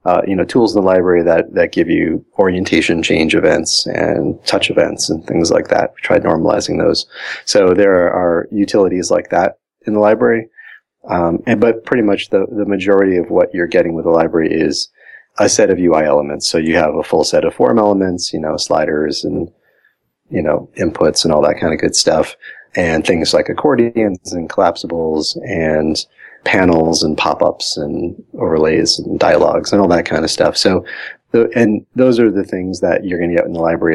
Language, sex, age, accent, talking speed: English, male, 30-49, American, 200 wpm